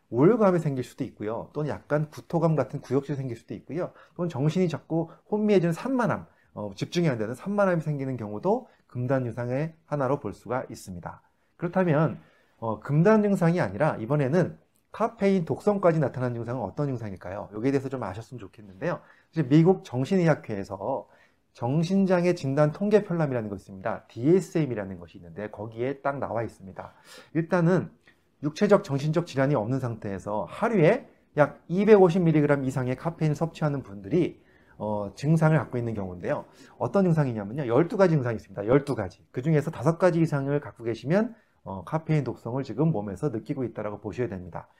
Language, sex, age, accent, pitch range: Korean, male, 30-49, native, 115-170 Hz